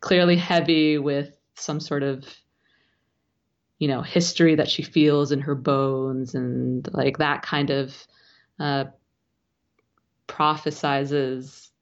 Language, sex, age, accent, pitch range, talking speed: English, female, 20-39, American, 140-160 Hz, 110 wpm